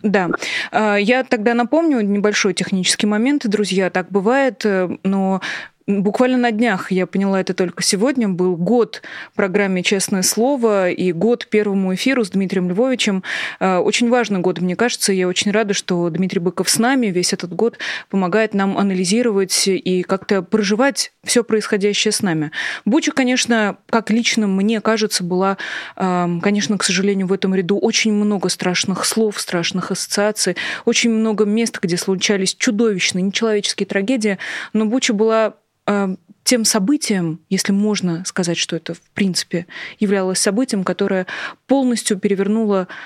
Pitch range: 185-230 Hz